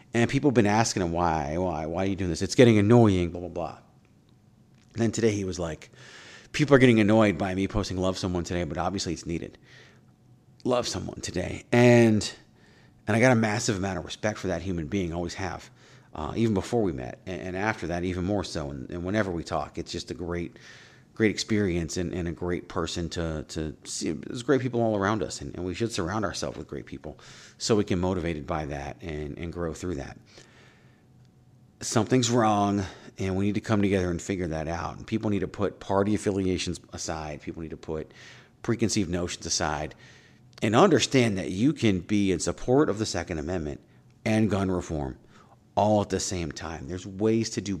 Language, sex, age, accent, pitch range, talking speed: English, male, 40-59, American, 85-110 Hz, 205 wpm